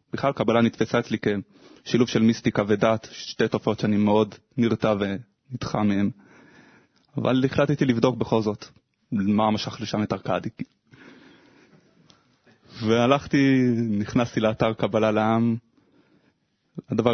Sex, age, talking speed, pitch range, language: male, 20-39, 110 wpm, 105-115 Hz, Hebrew